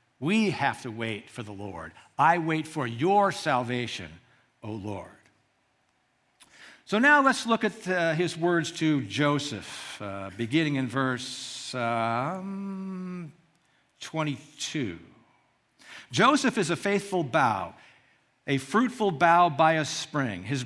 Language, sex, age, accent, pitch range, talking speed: English, male, 60-79, American, 135-190 Hz, 120 wpm